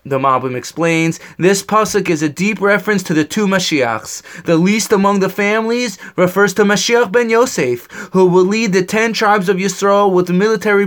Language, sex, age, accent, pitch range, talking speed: English, male, 20-39, American, 170-210 Hz, 180 wpm